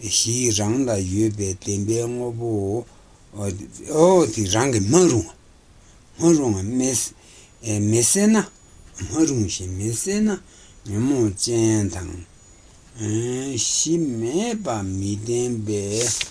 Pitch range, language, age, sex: 95-115 Hz, Italian, 60-79, male